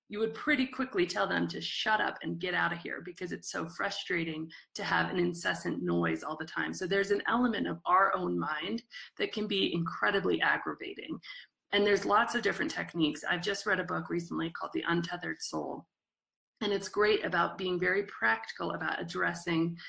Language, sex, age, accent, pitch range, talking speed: English, female, 30-49, American, 170-225 Hz, 195 wpm